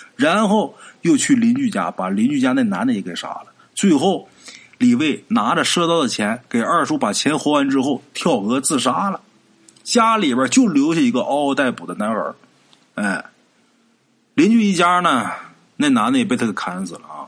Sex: male